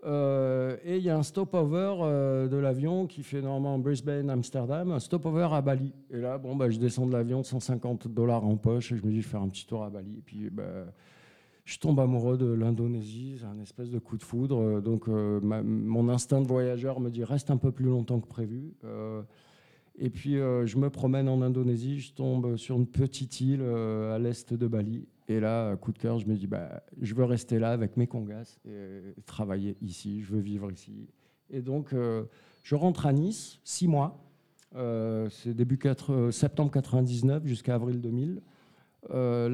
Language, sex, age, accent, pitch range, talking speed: French, male, 50-69, French, 110-135 Hz, 210 wpm